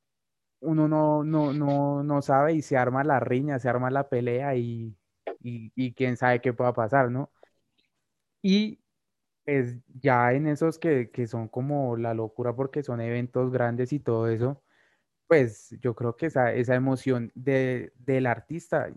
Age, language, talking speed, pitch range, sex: 20-39, Spanish, 165 wpm, 120-145 Hz, male